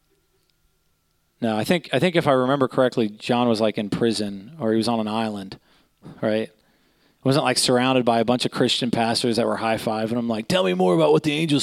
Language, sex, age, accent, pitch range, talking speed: English, male, 30-49, American, 110-145 Hz, 230 wpm